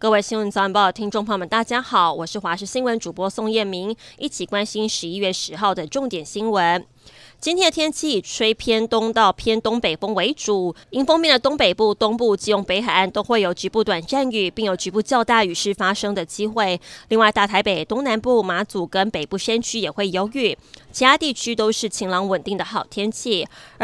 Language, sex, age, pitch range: Chinese, female, 20-39, 195-235 Hz